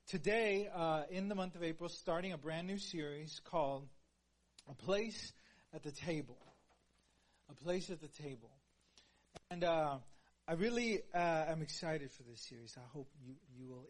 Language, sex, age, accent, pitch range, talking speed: English, male, 30-49, American, 125-170 Hz, 165 wpm